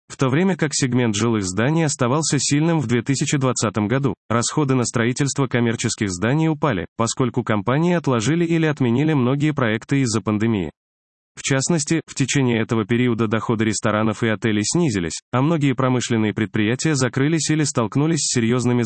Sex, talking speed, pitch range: male, 150 wpm, 110-145 Hz